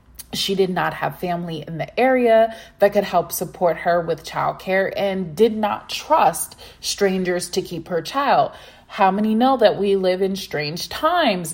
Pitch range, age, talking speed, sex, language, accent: 180-230 Hz, 20-39, 175 wpm, female, English, American